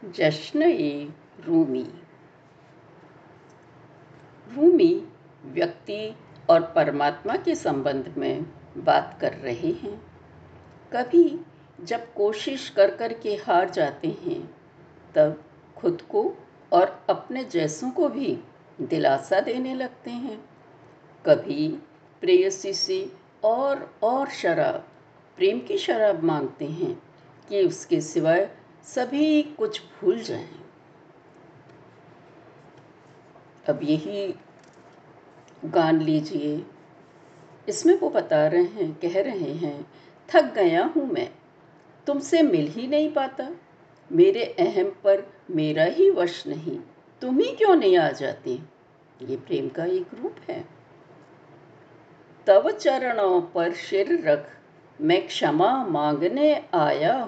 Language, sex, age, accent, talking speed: Hindi, female, 60-79, native, 105 wpm